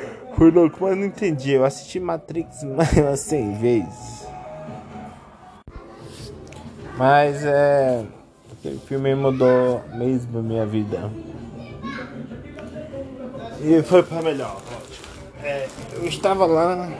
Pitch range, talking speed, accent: 115-145 Hz, 100 wpm, Brazilian